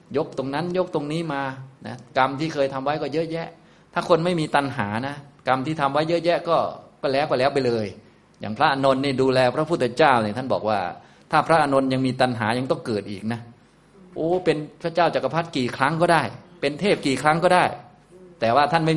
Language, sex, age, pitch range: Thai, male, 20-39, 115-150 Hz